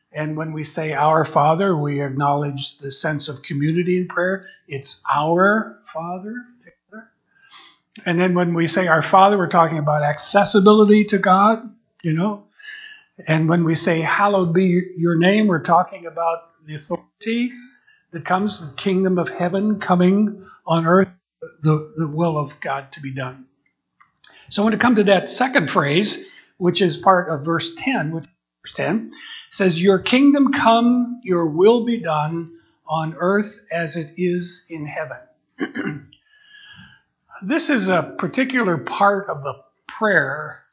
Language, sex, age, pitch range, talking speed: English, male, 60-79, 160-210 Hz, 155 wpm